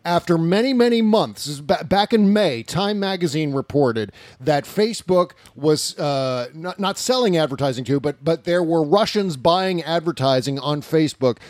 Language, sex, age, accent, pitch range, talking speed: English, male, 40-59, American, 130-170 Hz, 150 wpm